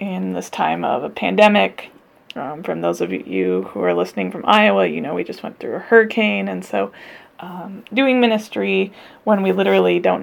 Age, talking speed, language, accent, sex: 20-39, 195 wpm, English, American, female